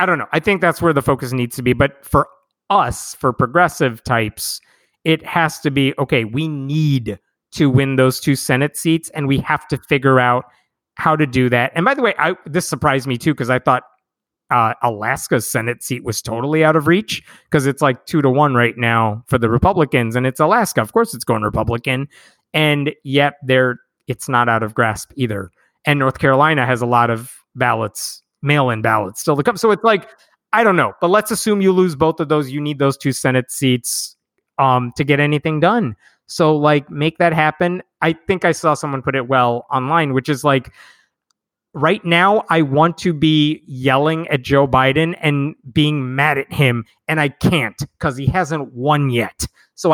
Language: English